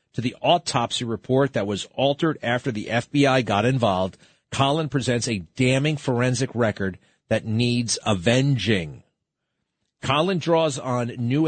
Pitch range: 115-150 Hz